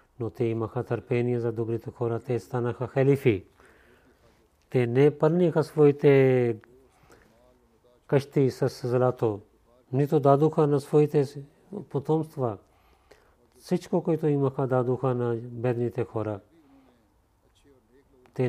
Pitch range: 120-140 Hz